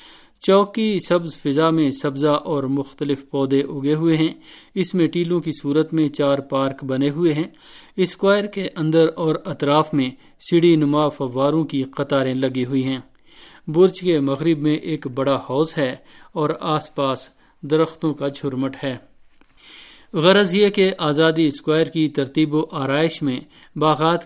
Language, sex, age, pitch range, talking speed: Urdu, male, 40-59, 140-165 Hz, 155 wpm